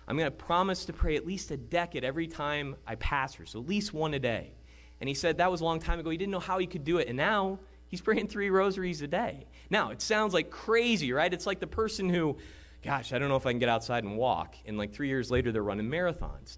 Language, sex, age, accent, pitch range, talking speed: English, male, 20-39, American, 130-200 Hz, 275 wpm